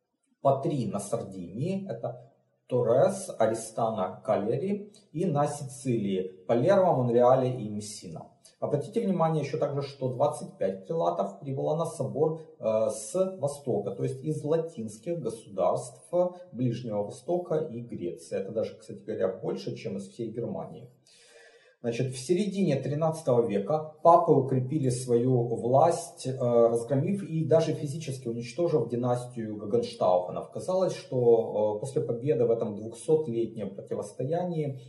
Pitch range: 115-160 Hz